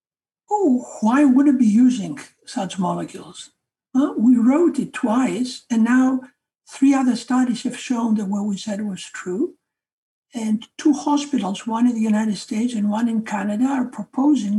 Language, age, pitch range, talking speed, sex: English, 60-79, 200-260 Hz, 165 wpm, male